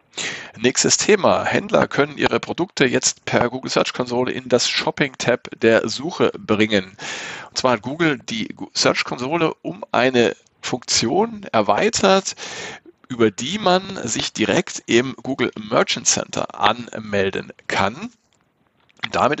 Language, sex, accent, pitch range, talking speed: German, male, German, 110-135 Hz, 125 wpm